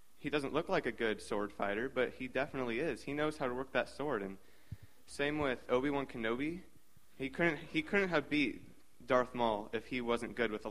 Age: 20-39